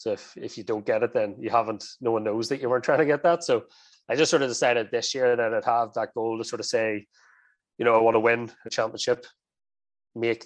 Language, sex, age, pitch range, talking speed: English, male, 20-39, 110-160 Hz, 265 wpm